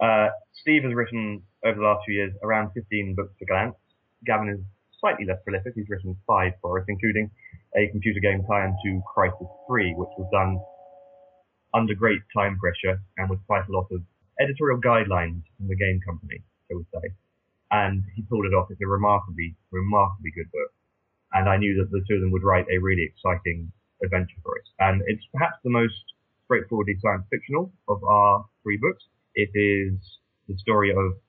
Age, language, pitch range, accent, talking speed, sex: 20-39, English, 95-110 Hz, British, 190 wpm, male